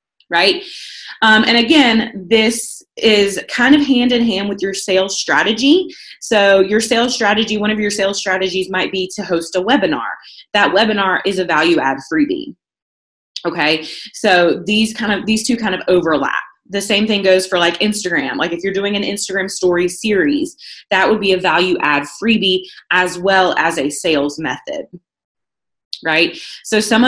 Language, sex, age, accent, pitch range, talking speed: English, female, 20-39, American, 185-240 Hz, 175 wpm